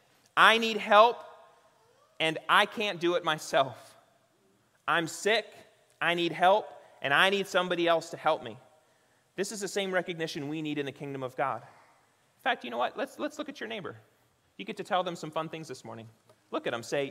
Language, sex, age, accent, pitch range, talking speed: English, male, 30-49, American, 165-220 Hz, 205 wpm